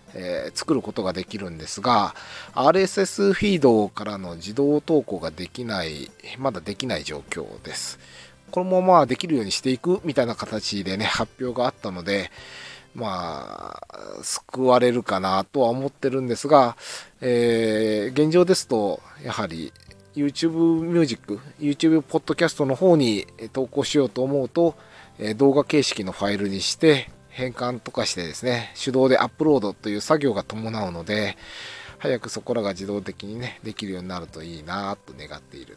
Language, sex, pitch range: Japanese, male, 95-140 Hz